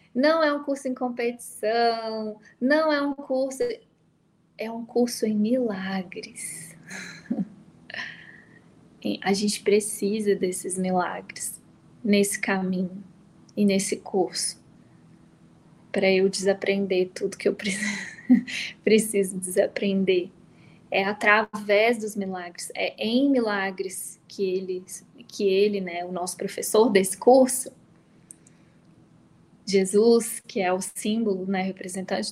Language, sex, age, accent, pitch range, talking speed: Portuguese, female, 10-29, Brazilian, 190-220 Hz, 105 wpm